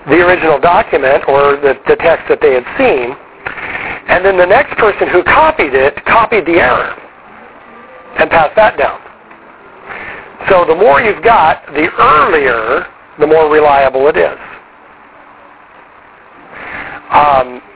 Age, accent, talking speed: 50-69, American, 130 wpm